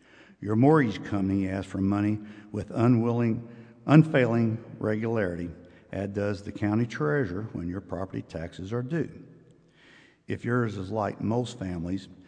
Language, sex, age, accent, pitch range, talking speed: English, male, 60-79, American, 95-115 Hz, 130 wpm